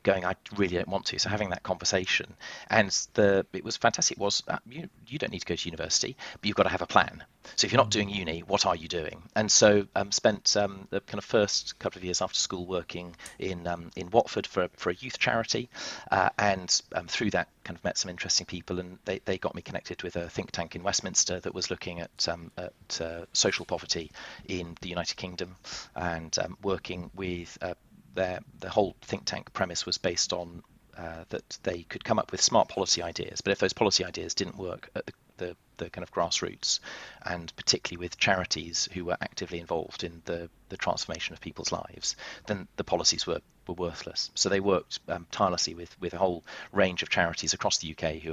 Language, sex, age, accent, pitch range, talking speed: English, male, 40-59, British, 85-95 Hz, 220 wpm